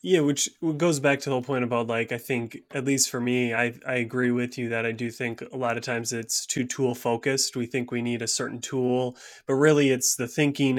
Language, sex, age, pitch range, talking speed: English, male, 20-39, 120-135 Hz, 250 wpm